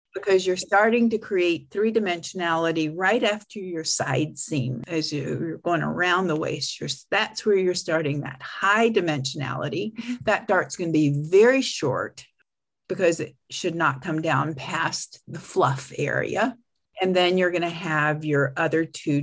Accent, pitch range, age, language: American, 150-205 Hz, 50-69, English